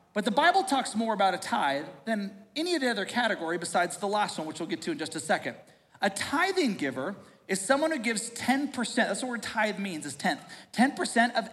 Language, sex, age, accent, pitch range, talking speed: English, male, 40-59, American, 200-265 Hz, 225 wpm